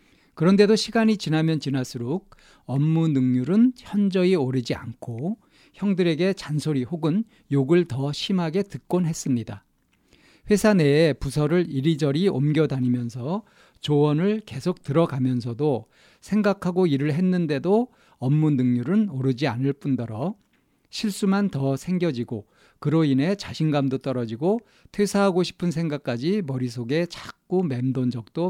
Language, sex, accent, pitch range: Korean, male, native, 130-185 Hz